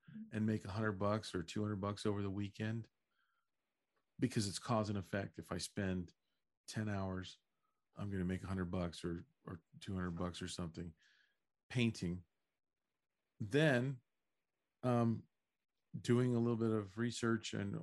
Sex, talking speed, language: male, 150 wpm, English